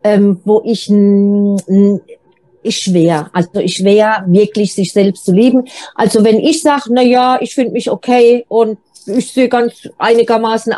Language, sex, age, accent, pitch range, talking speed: German, female, 40-59, German, 180-225 Hz, 150 wpm